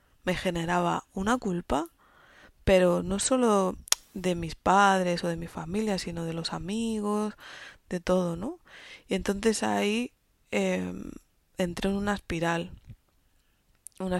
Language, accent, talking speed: Spanish, Spanish, 125 wpm